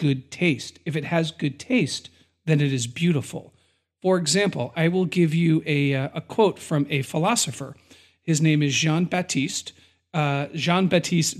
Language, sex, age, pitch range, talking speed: English, male, 40-59, 140-185 Hz, 155 wpm